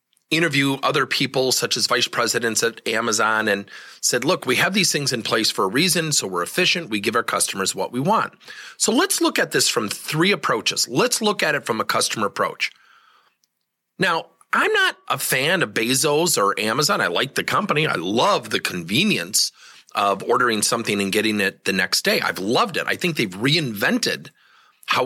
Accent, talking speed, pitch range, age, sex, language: American, 195 wpm, 150-220 Hz, 30-49, male, English